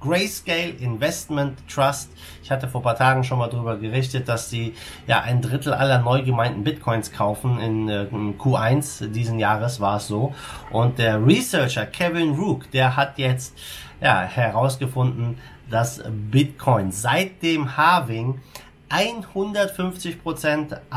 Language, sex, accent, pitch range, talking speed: German, male, German, 115-145 Hz, 135 wpm